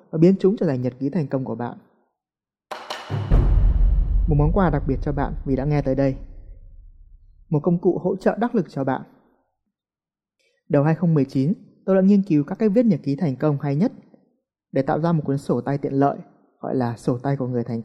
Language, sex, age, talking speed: Vietnamese, male, 20-39, 210 wpm